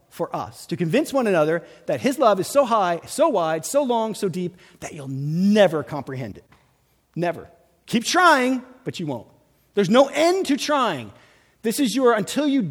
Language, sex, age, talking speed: English, male, 40-59, 185 wpm